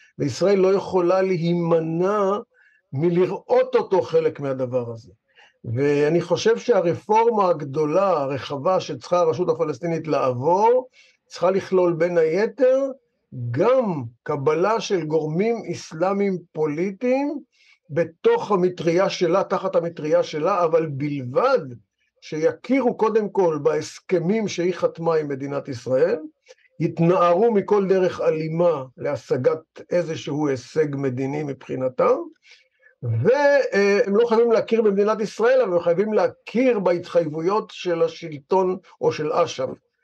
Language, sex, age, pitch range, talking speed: Hebrew, male, 50-69, 160-225 Hz, 105 wpm